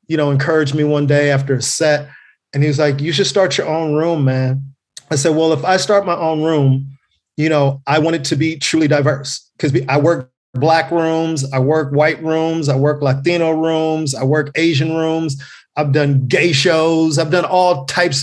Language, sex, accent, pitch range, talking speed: English, male, American, 145-170 Hz, 205 wpm